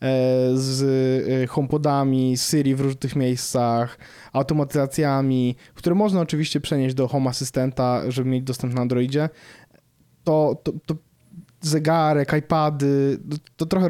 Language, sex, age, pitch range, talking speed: Polish, male, 20-39, 130-160 Hz, 115 wpm